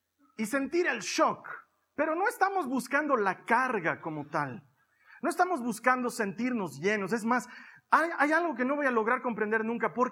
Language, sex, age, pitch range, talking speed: Spanish, male, 40-59, 215-275 Hz, 180 wpm